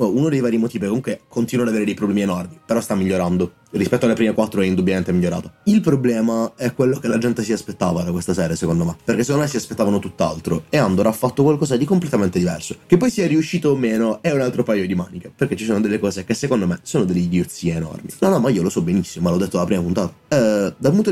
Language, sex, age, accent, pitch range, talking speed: Italian, male, 20-39, native, 95-130 Hz, 260 wpm